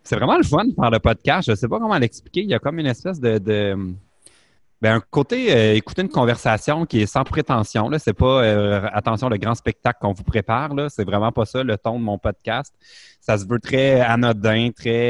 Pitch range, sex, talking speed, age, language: 110-140 Hz, male, 235 wpm, 30-49, French